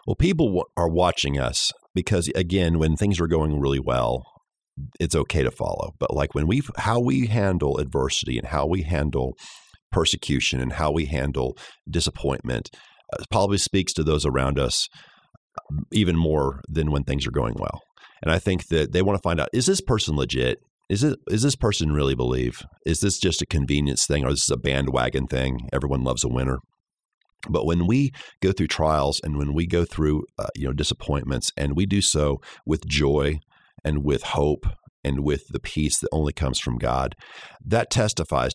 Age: 40-59